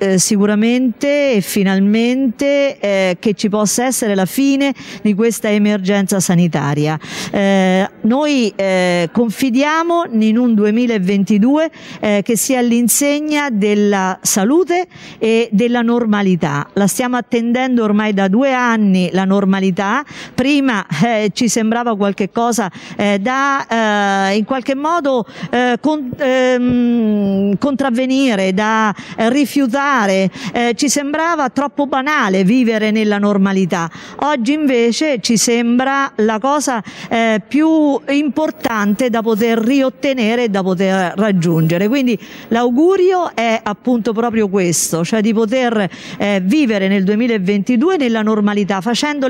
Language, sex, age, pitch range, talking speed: Italian, female, 50-69, 205-260 Hz, 120 wpm